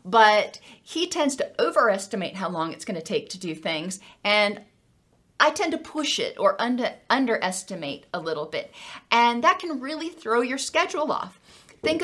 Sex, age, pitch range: female, 40-59, 200-245 Hz